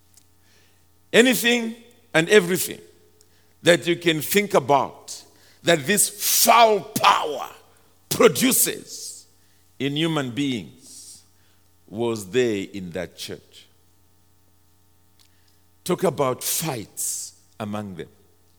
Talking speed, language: 85 wpm, English